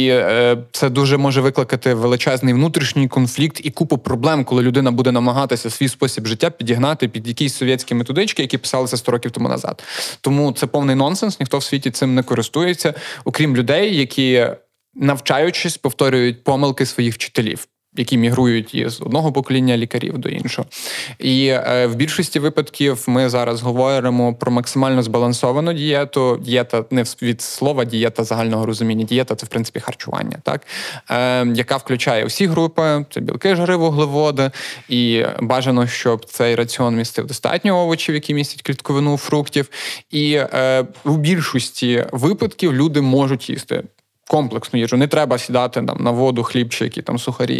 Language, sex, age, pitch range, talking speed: Ukrainian, male, 20-39, 120-140 Hz, 155 wpm